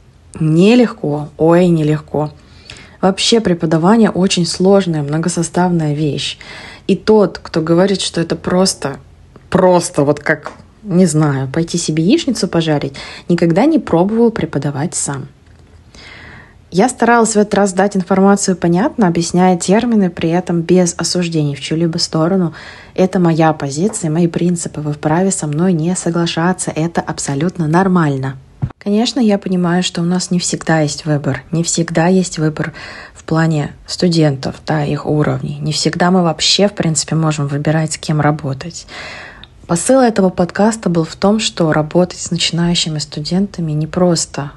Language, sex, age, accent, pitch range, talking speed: Russian, female, 20-39, native, 155-185 Hz, 140 wpm